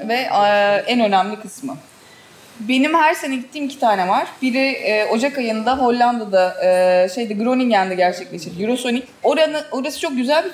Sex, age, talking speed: female, 30-49, 130 wpm